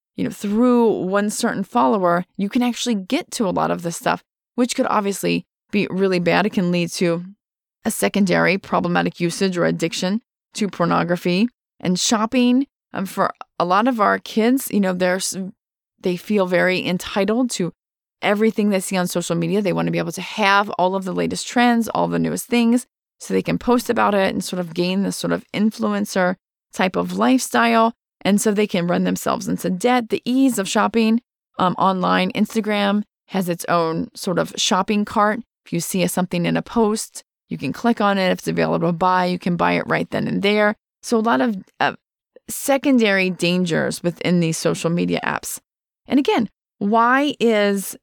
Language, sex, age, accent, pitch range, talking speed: English, female, 20-39, American, 180-225 Hz, 190 wpm